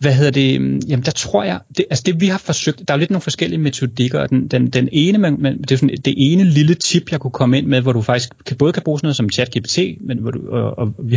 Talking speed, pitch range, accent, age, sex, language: 290 wpm, 125-150 Hz, native, 30-49, male, Danish